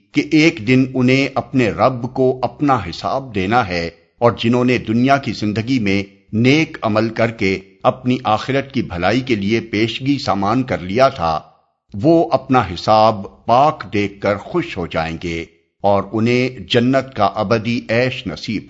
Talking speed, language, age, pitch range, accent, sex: 160 wpm, English, 50-69, 100-130 Hz, Indian, male